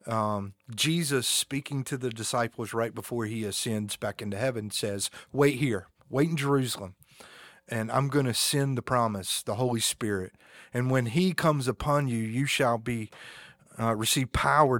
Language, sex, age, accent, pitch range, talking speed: English, male, 40-59, American, 105-135 Hz, 165 wpm